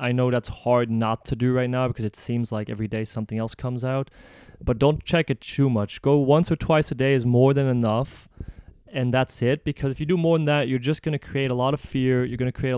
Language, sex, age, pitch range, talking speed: English, male, 20-39, 115-140 Hz, 275 wpm